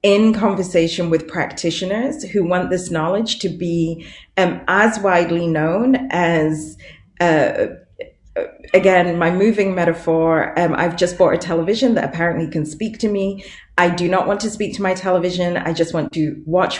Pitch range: 165-190 Hz